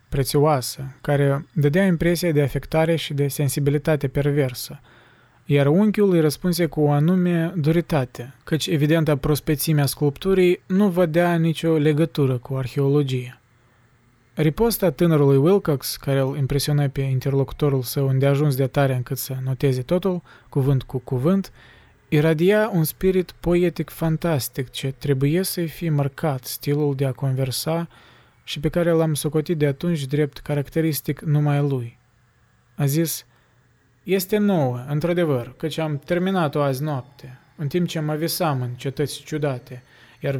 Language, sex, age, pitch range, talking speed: Romanian, male, 20-39, 135-165 Hz, 135 wpm